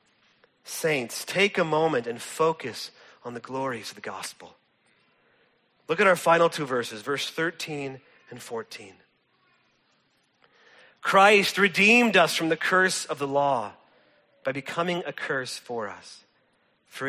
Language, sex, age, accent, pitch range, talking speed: English, male, 40-59, American, 135-175 Hz, 135 wpm